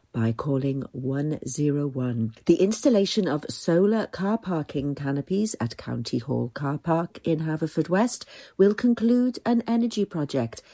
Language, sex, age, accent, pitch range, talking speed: English, female, 50-69, British, 130-185 Hz, 130 wpm